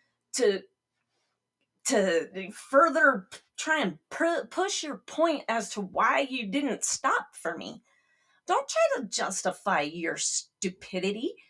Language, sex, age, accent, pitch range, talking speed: English, female, 30-49, American, 215-330 Hz, 120 wpm